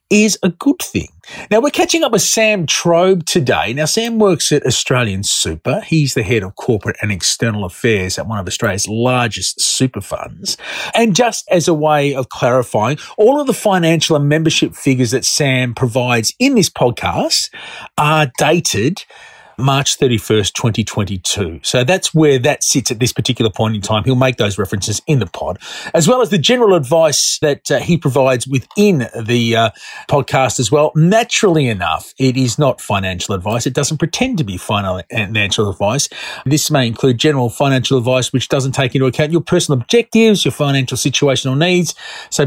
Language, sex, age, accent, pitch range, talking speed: English, male, 40-59, Australian, 115-170 Hz, 175 wpm